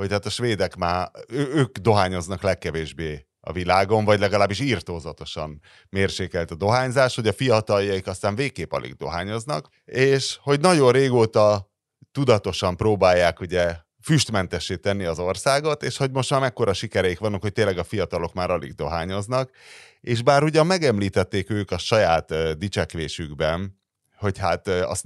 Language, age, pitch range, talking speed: Hungarian, 30-49, 85-110 Hz, 140 wpm